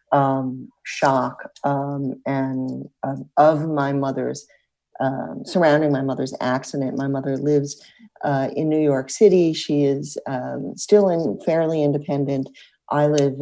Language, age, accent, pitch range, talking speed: English, 50-69, American, 135-170 Hz, 135 wpm